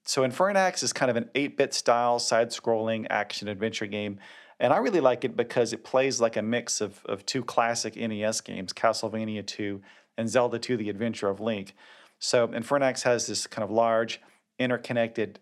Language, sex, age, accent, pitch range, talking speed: English, male, 40-59, American, 105-115 Hz, 175 wpm